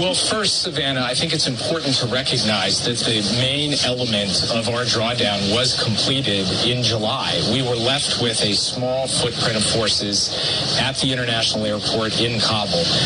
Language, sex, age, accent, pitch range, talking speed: English, male, 40-59, American, 110-135 Hz, 160 wpm